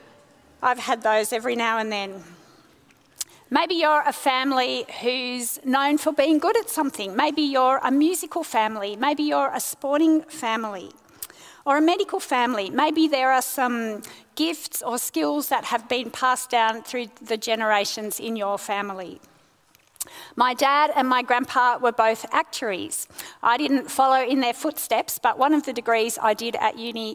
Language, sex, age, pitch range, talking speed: English, female, 40-59, 230-295 Hz, 160 wpm